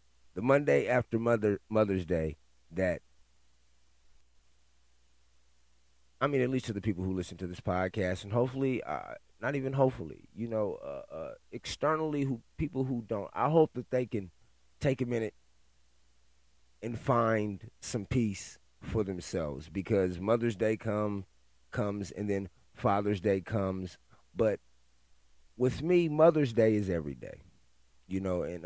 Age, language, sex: 30-49, English, male